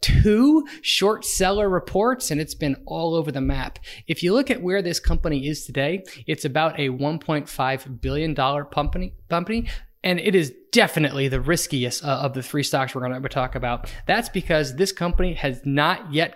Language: English